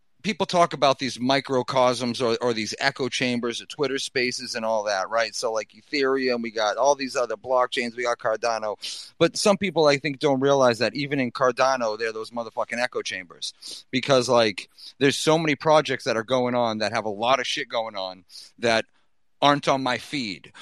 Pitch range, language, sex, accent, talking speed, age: 115-135 Hz, English, male, American, 200 wpm, 30-49